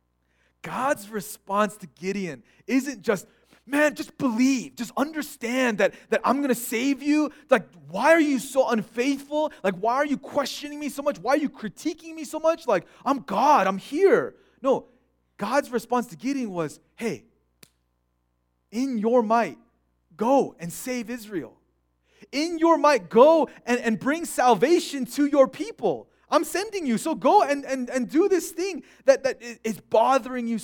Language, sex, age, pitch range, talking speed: English, male, 30-49, 190-285 Hz, 165 wpm